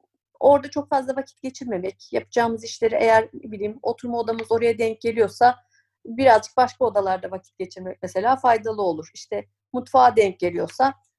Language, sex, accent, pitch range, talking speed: Turkish, female, native, 200-250 Hz, 140 wpm